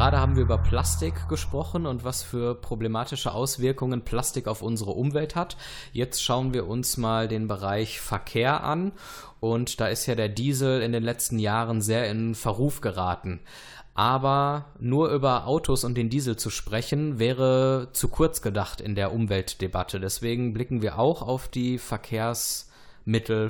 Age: 20-39